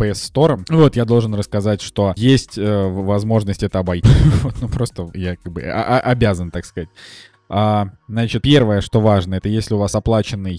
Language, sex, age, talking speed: Russian, male, 20-39, 170 wpm